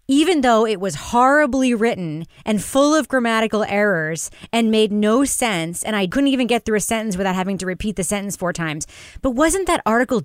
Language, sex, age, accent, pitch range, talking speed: English, female, 30-49, American, 185-275 Hz, 205 wpm